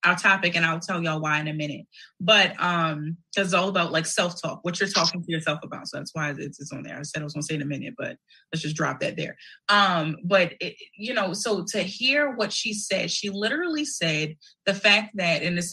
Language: English